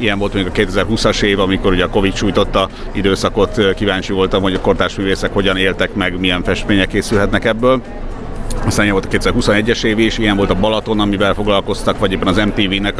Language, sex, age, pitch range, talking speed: Hungarian, male, 50-69, 95-110 Hz, 190 wpm